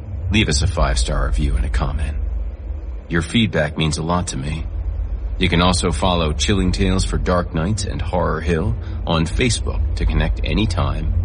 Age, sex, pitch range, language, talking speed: 40-59, male, 80-90 Hz, English, 170 wpm